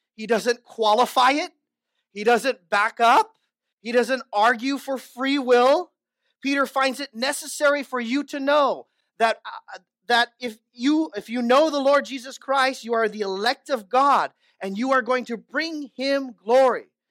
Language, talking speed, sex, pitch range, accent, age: English, 160 wpm, male, 230-305 Hz, American, 30-49